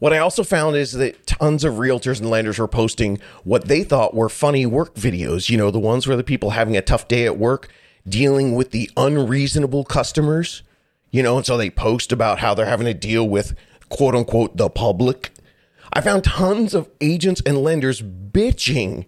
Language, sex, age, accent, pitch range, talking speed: English, male, 30-49, American, 110-150 Hz, 200 wpm